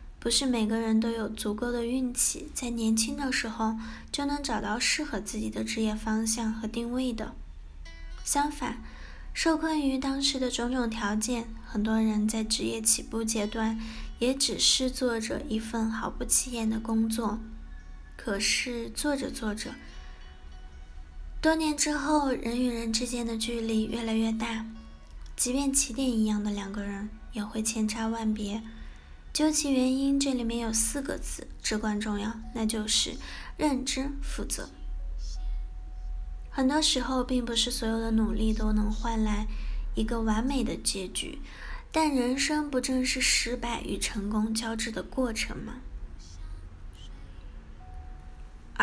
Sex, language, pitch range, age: female, Chinese, 210-255 Hz, 10-29